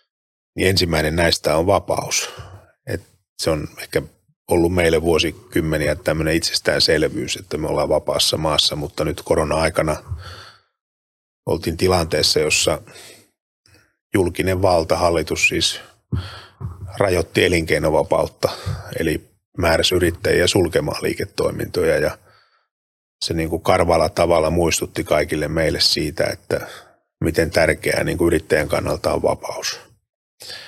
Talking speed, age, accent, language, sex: 95 wpm, 30-49, native, Finnish, male